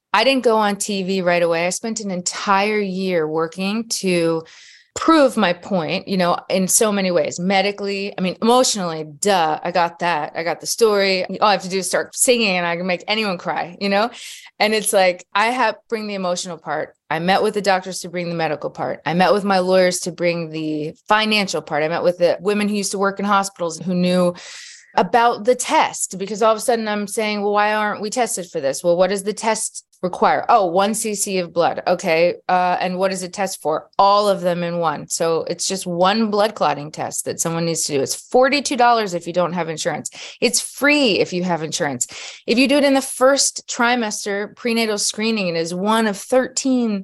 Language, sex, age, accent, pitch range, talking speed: English, female, 20-39, American, 175-220 Hz, 220 wpm